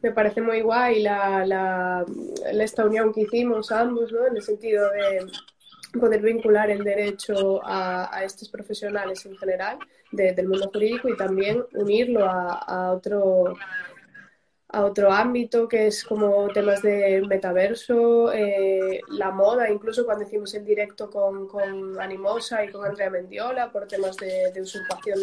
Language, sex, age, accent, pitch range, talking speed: Spanish, female, 20-39, Spanish, 195-225 Hz, 155 wpm